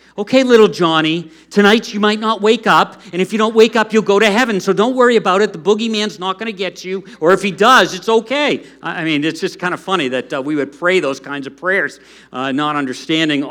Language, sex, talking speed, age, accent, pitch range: English, male, 250 wpm, 50-69, American, 140-190 Hz